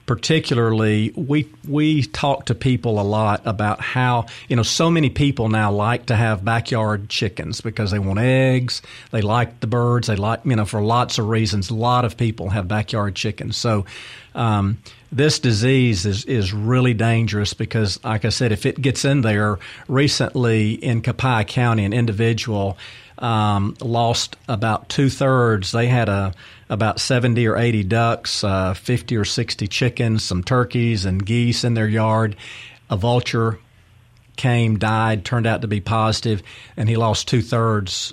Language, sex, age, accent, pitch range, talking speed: English, male, 40-59, American, 105-125 Hz, 165 wpm